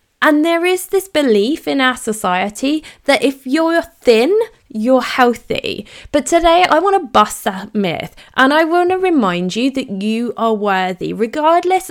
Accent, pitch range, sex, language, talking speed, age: British, 195-290 Hz, female, English, 165 wpm, 20-39